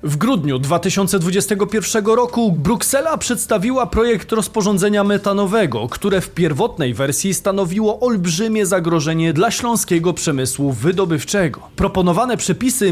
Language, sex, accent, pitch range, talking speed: Polish, male, native, 165-220 Hz, 100 wpm